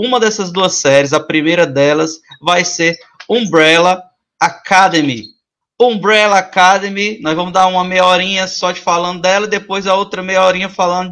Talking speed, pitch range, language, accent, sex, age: 160 wpm, 175-200 Hz, Portuguese, Brazilian, male, 20-39